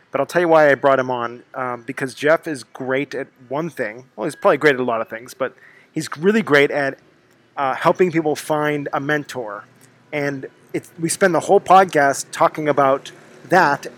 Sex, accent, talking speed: male, American, 200 wpm